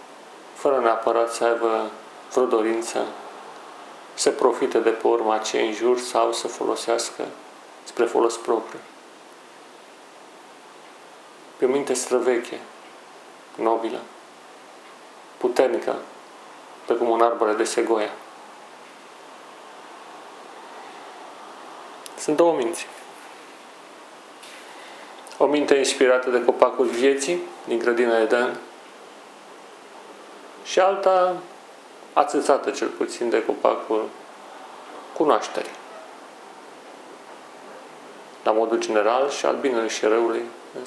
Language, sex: Romanian, male